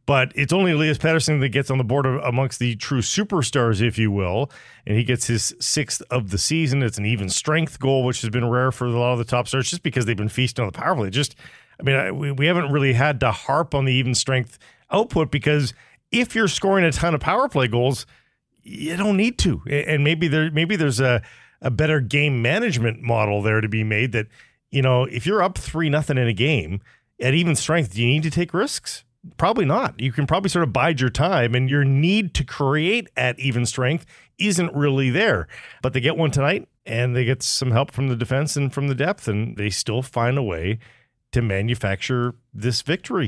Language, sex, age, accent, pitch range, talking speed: English, male, 40-59, American, 120-155 Hz, 225 wpm